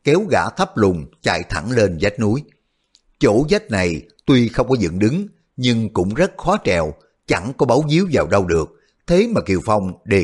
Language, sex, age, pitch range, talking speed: Vietnamese, male, 60-79, 100-145 Hz, 200 wpm